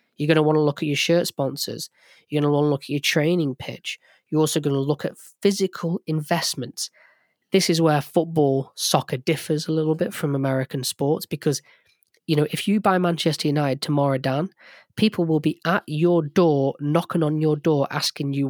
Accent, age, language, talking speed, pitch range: British, 20-39, English, 200 wpm, 135-160 Hz